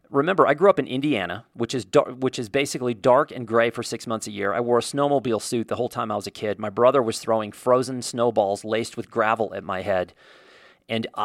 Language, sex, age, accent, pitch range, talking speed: English, male, 40-59, American, 120-160 Hz, 240 wpm